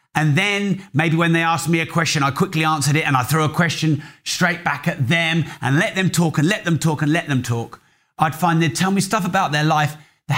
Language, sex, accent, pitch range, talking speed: English, male, British, 140-180 Hz, 255 wpm